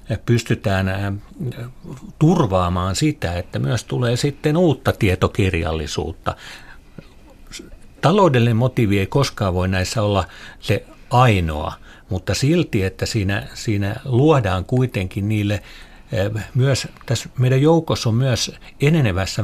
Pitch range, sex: 95-120 Hz, male